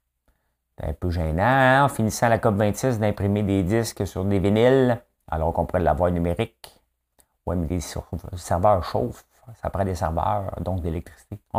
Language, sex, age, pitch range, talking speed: French, male, 50-69, 85-110 Hz, 165 wpm